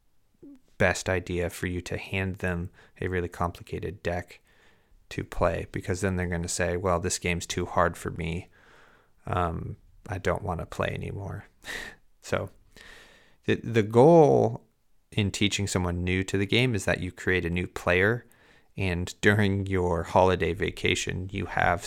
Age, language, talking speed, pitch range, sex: 30-49, English, 160 wpm, 90-100 Hz, male